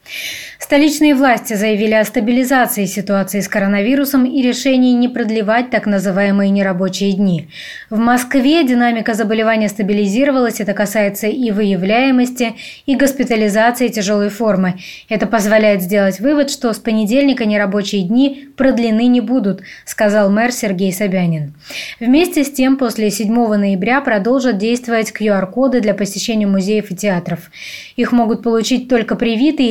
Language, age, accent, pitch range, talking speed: Russian, 20-39, native, 205-245 Hz, 130 wpm